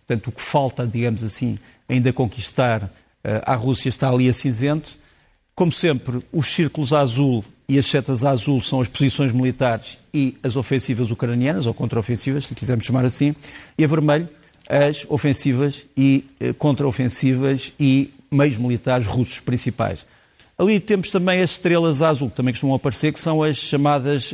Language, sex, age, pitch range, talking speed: Portuguese, male, 50-69, 125-145 Hz, 160 wpm